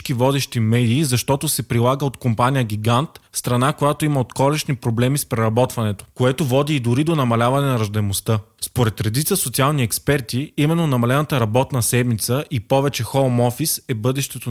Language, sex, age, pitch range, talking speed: Bulgarian, male, 20-39, 115-140 Hz, 155 wpm